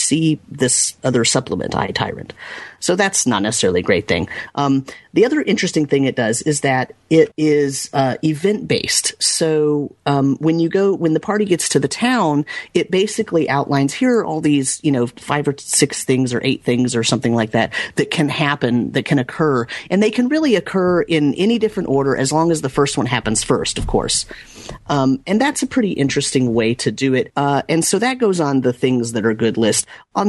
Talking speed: 210 wpm